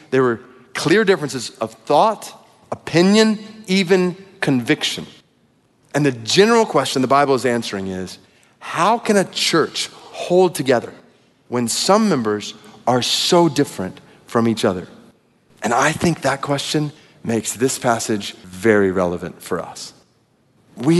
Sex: male